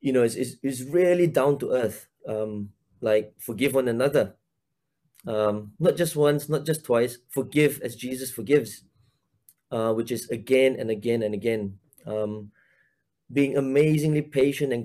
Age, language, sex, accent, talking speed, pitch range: 20-39, English, male, Malaysian, 155 wpm, 110-145 Hz